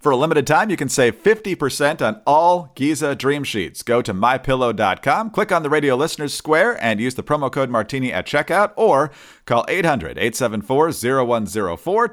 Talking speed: 165 wpm